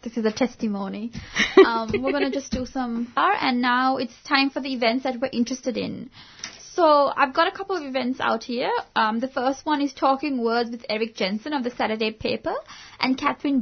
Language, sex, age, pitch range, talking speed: English, female, 10-29, 230-275 Hz, 205 wpm